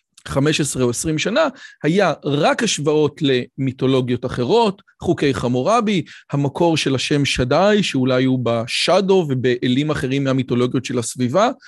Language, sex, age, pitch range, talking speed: Hebrew, male, 40-59, 130-180 Hz, 120 wpm